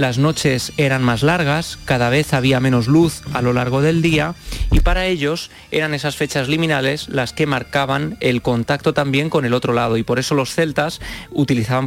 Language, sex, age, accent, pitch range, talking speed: Spanish, male, 20-39, Spanish, 125-155 Hz, 190 wpm